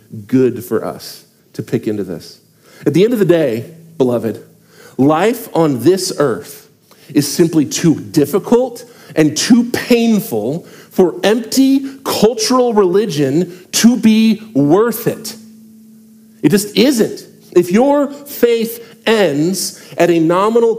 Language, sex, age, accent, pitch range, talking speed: English, male, 40-59, American, 175-230 Hz, 125 wpm